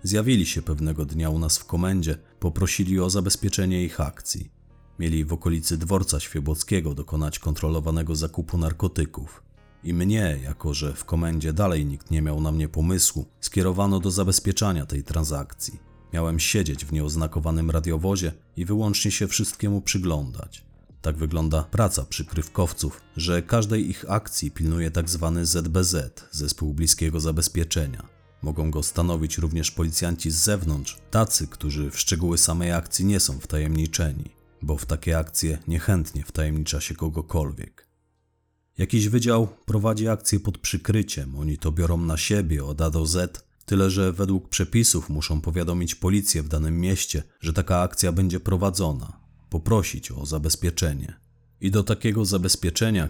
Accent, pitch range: native, 80-95 Hz